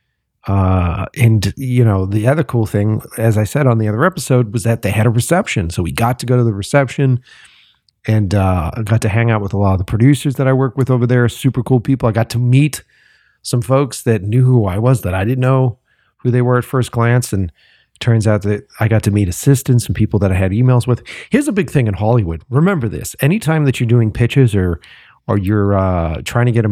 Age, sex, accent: 40-59, male, American